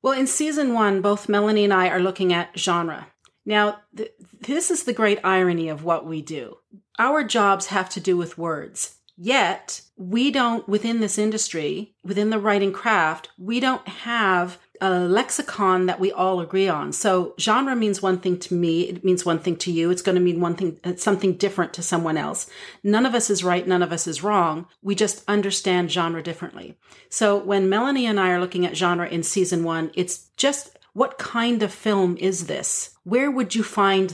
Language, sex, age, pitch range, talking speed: English, female, 40-59, 180-225 Hz, 195 wpm